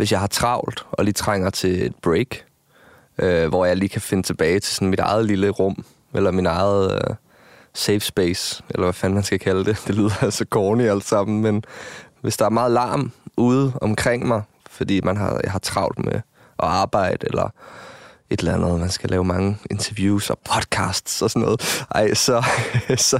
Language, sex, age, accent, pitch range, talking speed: Danish, male, 20-39, native, 100-120 Hz, 200 wpm